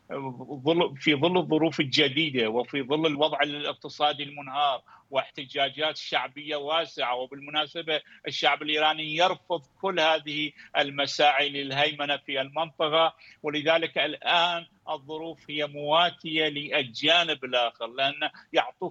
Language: Arabic